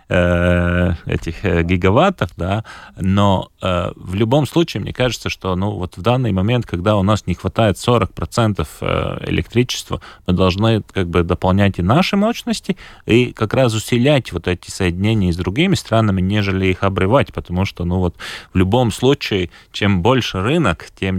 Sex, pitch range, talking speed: male, 90-115 Hz, 155 wpm